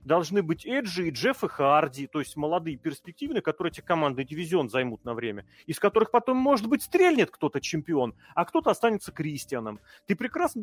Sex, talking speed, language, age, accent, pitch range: male, 180 wpm, Russian, 30-49, native, 135-215 Hz